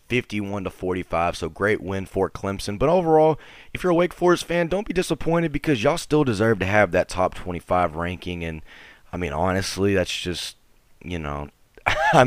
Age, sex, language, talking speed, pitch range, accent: 20-39, male, English, 175 wpm, 90-110 Hz, American